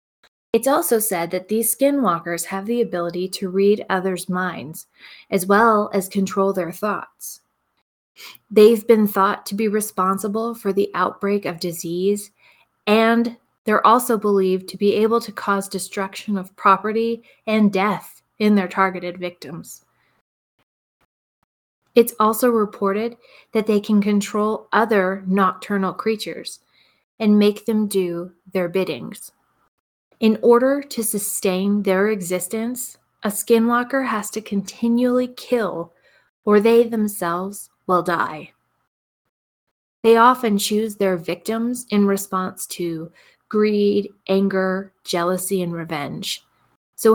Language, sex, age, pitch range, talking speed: English, female, 20-39, 185-220 Hz, 120 wpm